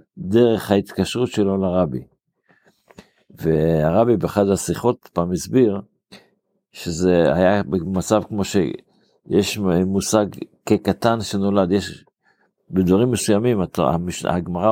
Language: Hebrew